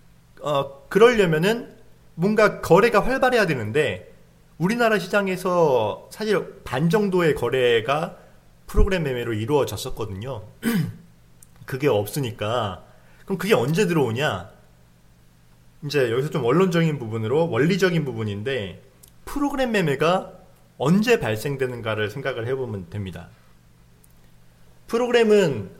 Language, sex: Korean, male